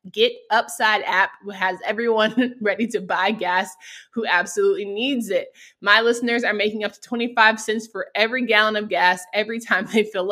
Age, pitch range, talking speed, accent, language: 20-39, 190-235 Hz, 175 wpm, American, English